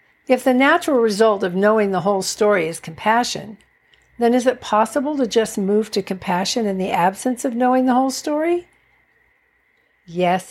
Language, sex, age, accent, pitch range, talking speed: English, female, 60-79, American, 205-285 Hz, 165 wpm